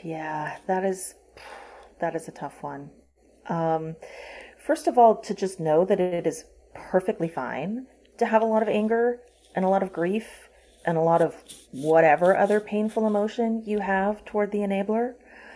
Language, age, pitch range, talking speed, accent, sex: English, 30-49, 160-200 Hz, 170 wpm, American, female